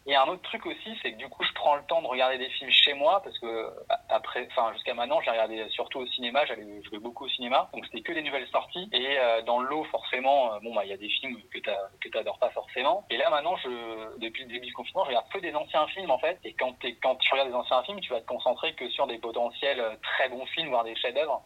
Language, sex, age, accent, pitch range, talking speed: French, male, 20-39, French, 115-145 Hz, 280 wpm